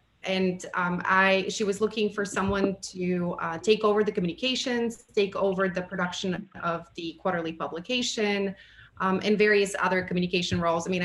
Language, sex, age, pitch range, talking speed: English, female, 30-49, 175-210 Hz, 165 wpm